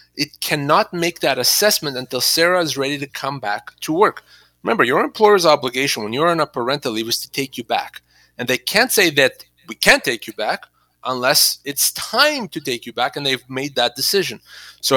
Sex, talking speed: male, 210 wpm